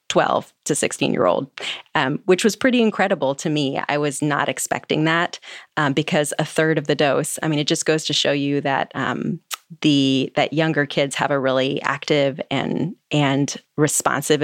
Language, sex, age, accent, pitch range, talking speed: English, female, 30-49, American, 145-170 Hz, 185 wpm